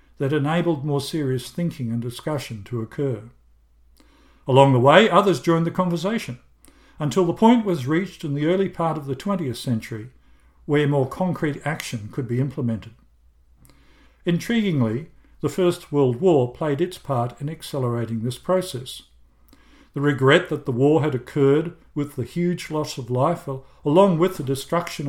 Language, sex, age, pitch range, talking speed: English, male, 50-69, 120-165 Hz, 155 wpm